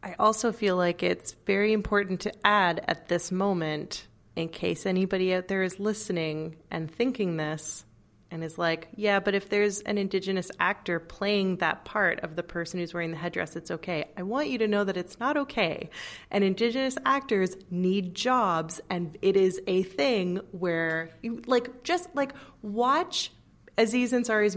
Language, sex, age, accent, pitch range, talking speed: English, female, 30-49, American, 170-220 Hz, 170 wpm